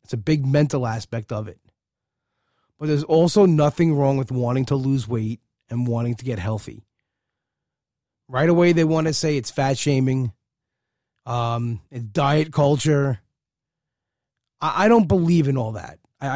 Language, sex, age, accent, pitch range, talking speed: English, male, 20-39, American, 125-155 Hz, 160 wpm